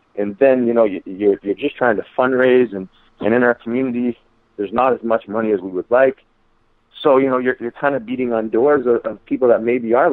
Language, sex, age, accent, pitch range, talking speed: English, male, 30-49, American, 95-115 Hz, 215 wpm